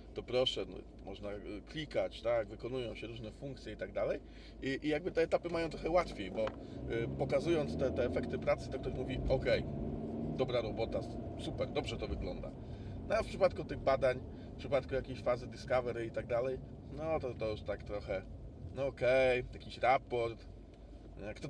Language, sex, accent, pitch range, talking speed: Polish, male, native, 115-135 Hz, 175 wpm